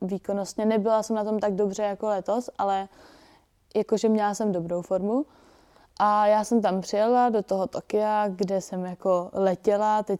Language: Czech